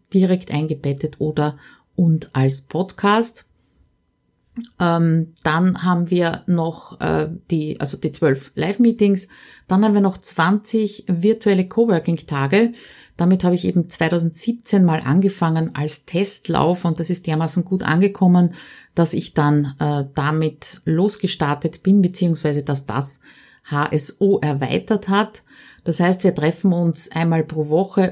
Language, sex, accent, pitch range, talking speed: German, female, Austrian, 155-190 Hz, 130 wpm